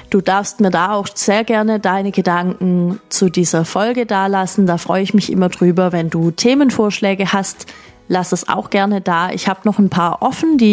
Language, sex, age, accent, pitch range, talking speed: German, female, 30-49, German, 180-230 Hz, 200 wpm